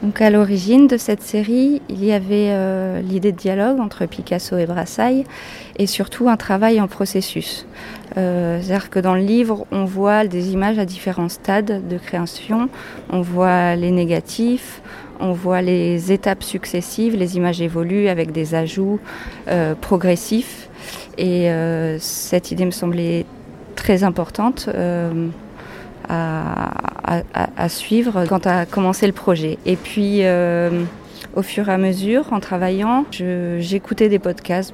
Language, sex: French, female